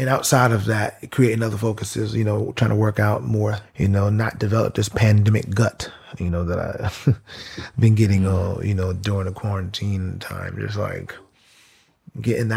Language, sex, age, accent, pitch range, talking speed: English, male, 30-49, American, 105-115 Hz, 170 wpm